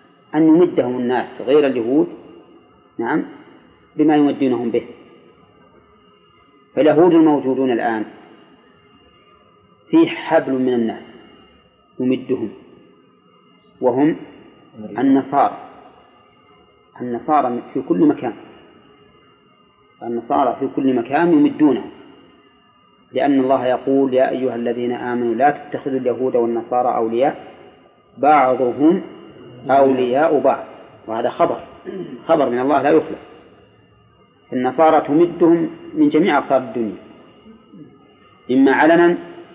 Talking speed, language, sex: 90 wpm, Arabic, male